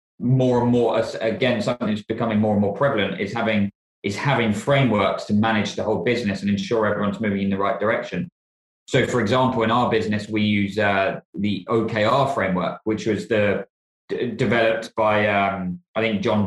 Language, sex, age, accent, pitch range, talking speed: English, male, 20-39, British, 105-120 Hz, 185 wpm